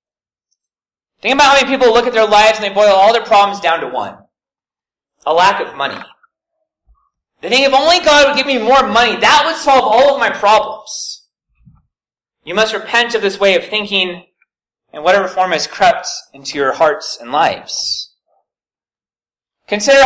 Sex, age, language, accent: male, 30-49, English, American